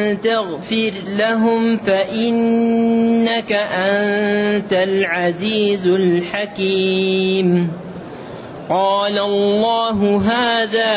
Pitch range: 175-210 Hz